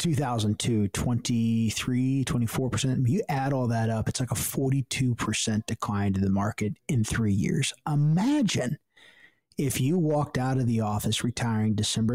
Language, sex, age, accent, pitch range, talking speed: English, male, 30-49, American, 115-150 Hz, 150 wpm